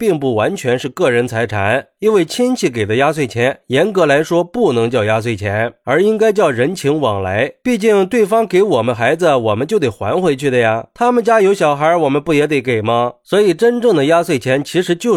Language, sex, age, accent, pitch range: Chinese, male, 20-39, native, 125-180 Hz